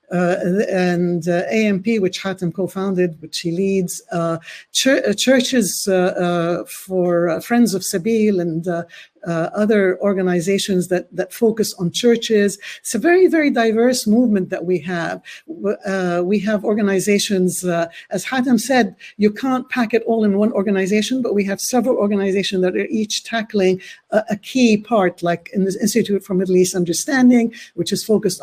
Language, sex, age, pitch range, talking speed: English, female, 60-79, 185-220 Hz, 165 wpm